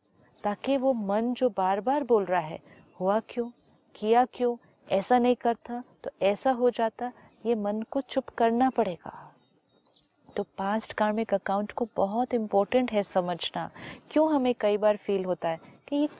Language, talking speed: Hindi, 165 wpm